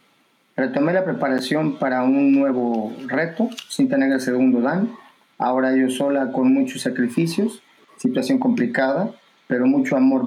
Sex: male